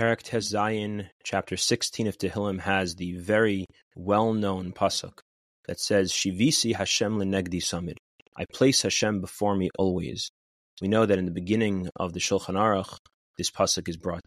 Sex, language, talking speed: male, English, 145 wpm